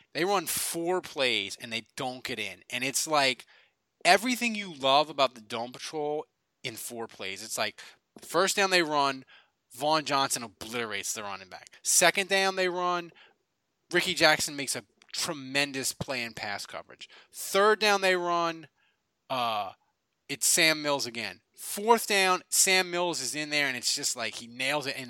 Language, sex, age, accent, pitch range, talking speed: English, male, 20-39, American, 125-185 Hz, 170 wpm